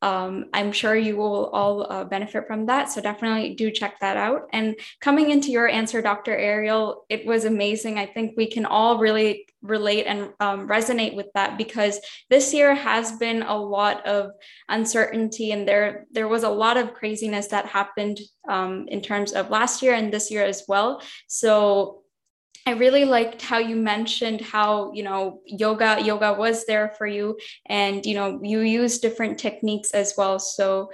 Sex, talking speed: female, 180 wpm